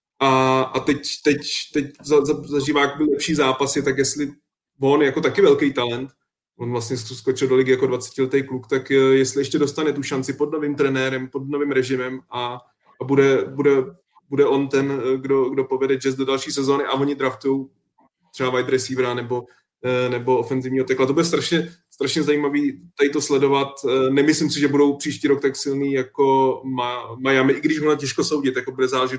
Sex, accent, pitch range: male, native, 130-145 Hz